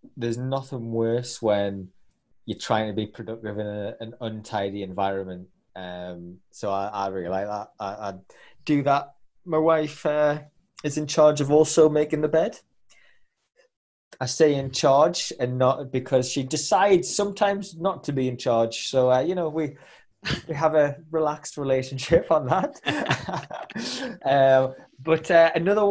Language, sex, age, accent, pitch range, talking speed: English, male, 20-39, British, 110-150 Hz, 155 wpm